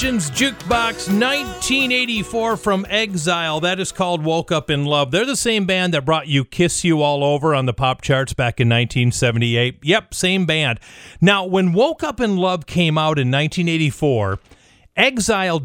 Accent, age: American, 40-59